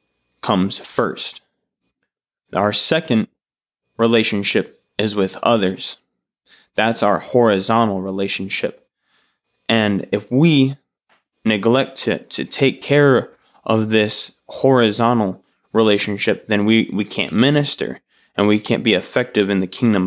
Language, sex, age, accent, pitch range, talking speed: English, male, 20-39, American, 100-120 Hz, 110 wpm